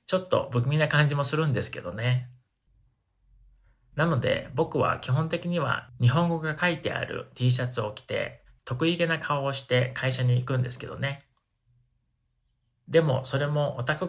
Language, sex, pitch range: Japanese, male, 125-160 Hz